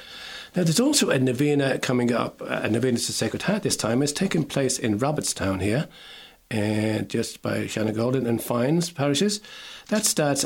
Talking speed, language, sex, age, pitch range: 170 wpm, English, male, 40-59, 115-145 Hz